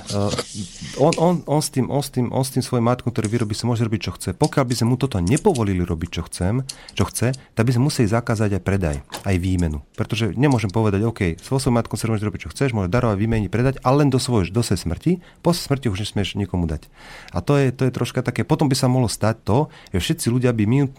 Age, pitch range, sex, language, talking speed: 40-59, 95-120 Hz, male, Slovak, 250 wpm